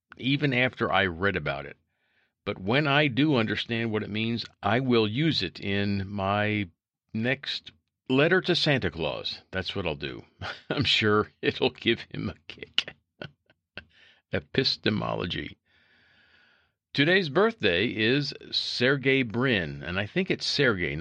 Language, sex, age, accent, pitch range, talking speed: English, male, 50-69, American, 90-120 Hz, 135 wpm